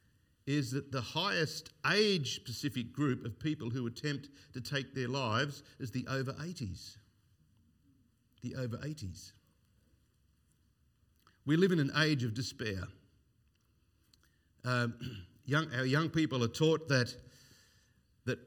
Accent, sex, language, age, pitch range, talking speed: Australian, male, English, 50-69, 115-155 Hz, 110 wpm